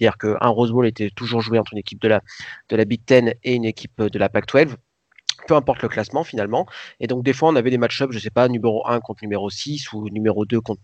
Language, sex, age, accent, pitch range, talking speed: French, male, 30-49, French, 110-130 Hz, 270 wpm